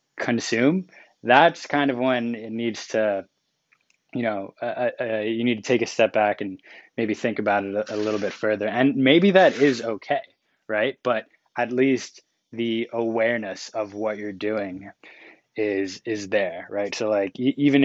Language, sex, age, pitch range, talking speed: English, male, 20-39, 105-125 Hz, 170 wpm